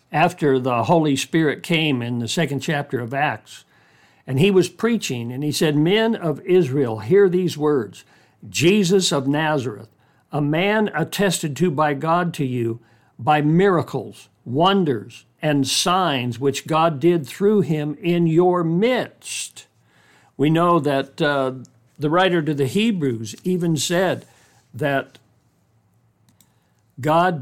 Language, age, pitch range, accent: English, 60-79, 135-180 Hz, American